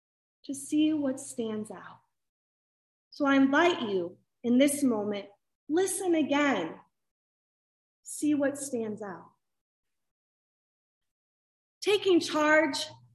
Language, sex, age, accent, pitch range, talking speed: English, female, 30-49, American, 260-325 Hz, 90 wpm